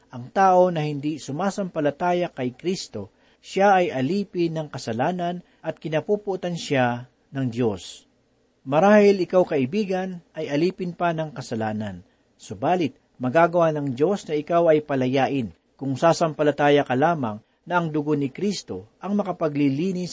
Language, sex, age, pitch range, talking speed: Filipino, male, 50-69, 135-180 Hz, 130 wpm